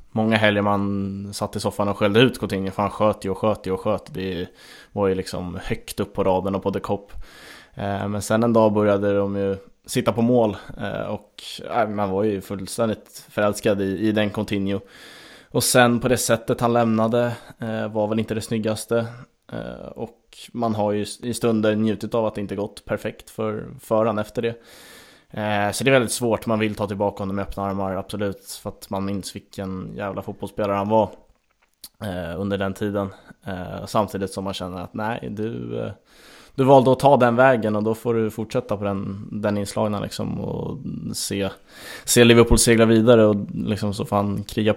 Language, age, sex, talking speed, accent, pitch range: Swedish, 20-39, male, 180 wpm, Norwegian, 100-110 Hz